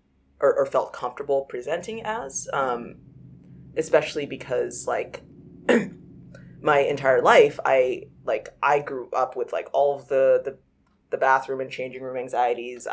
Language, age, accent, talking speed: English, 20-39, American, 140 wpm